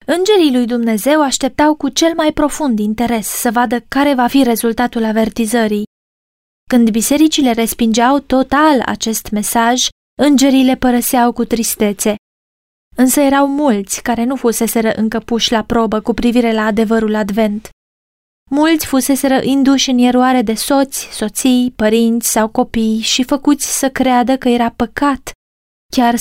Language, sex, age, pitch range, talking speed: Romanian, female, 20-39, 225-275 Hz, 135 wpm